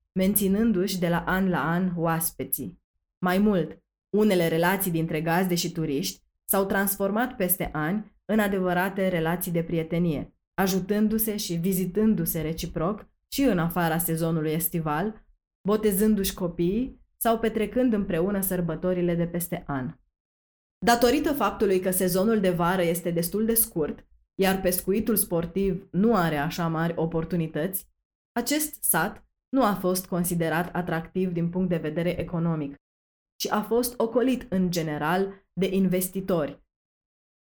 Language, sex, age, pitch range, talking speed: Romanian, female, 20-39, 165-200 Hz, 130 wpm